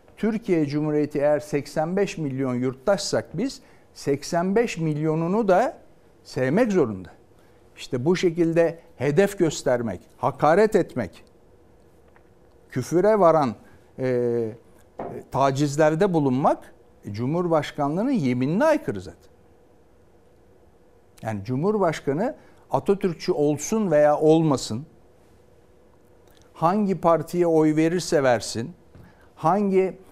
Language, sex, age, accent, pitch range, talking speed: Turkish, male, 60-79, native, 130-190 Hz, 80 wpm